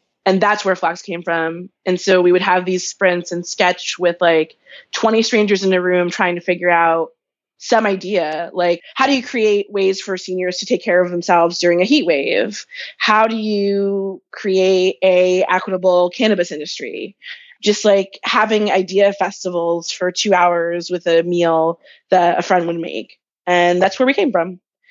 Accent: American